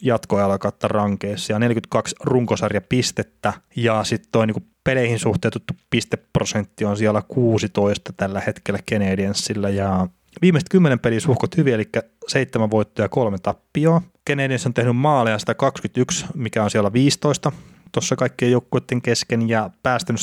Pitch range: 105-135 Hz